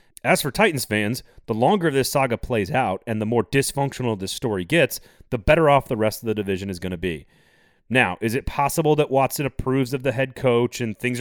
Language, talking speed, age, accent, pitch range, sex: English, 225 wpm, 30-49, American, 110-140 Hz, male